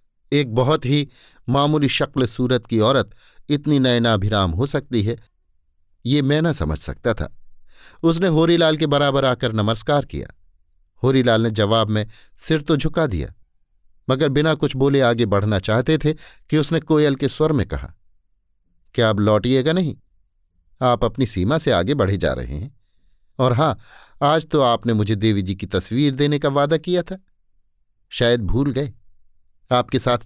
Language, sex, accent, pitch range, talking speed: Hindi, male, native, 95-140 Hz, 165 wpm